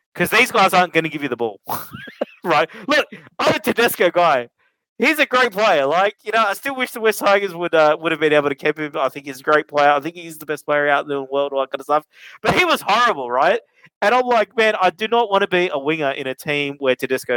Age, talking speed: 30-49, 275 wpm